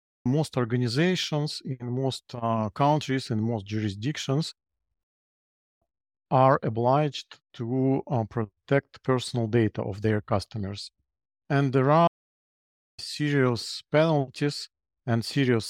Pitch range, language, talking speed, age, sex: 110-140 Hz, English, 100 wpm, 50-69, male